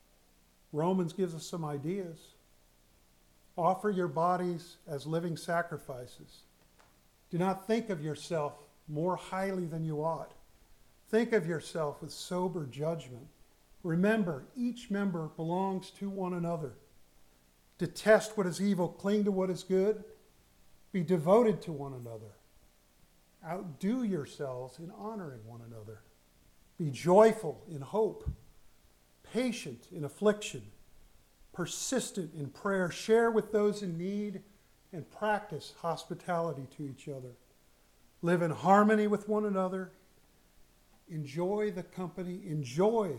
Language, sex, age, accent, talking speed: English, male, 50-69, American, 120 wpm